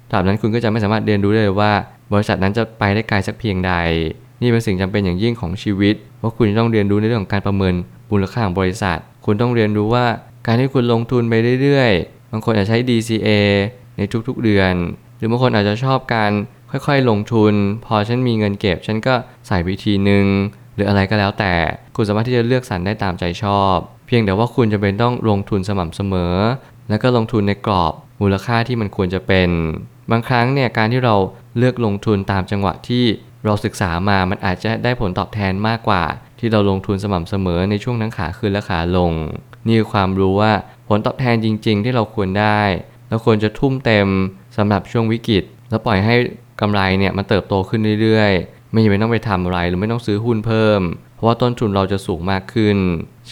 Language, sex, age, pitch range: Thai, male, 20-39, 100-120 Hz